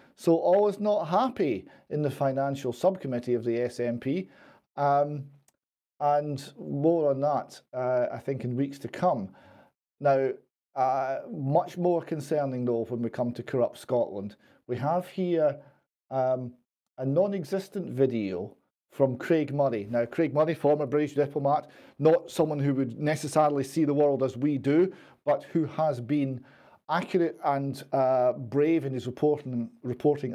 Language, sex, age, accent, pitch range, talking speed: English, male, 40-59, British, 125-155 Hz, 150 wpm